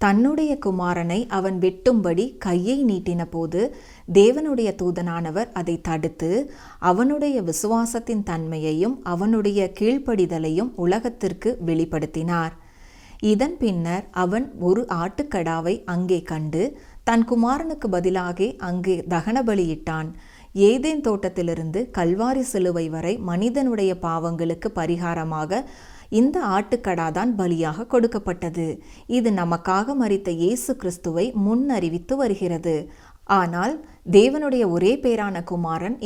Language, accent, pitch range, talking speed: Tamil, native, 170-230 Hz, 85 wpm